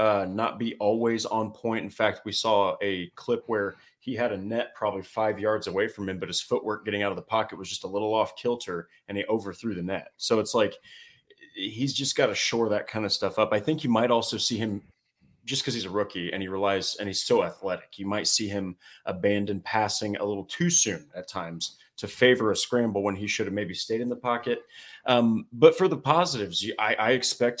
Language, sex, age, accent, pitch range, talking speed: English, male, 30-49, American, 100-120 Hz, 235 wpm